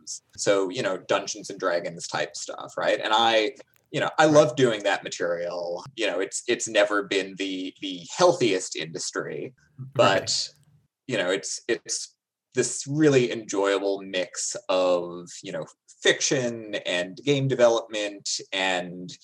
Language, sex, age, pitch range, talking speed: English, male, 20-39, 95-145 Hz, 140 wpm